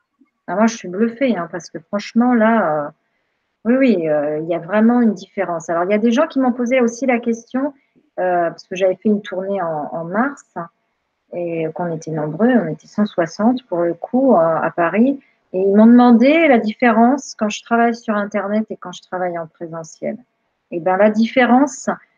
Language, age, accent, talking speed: French, 40-59, French, 205 wpm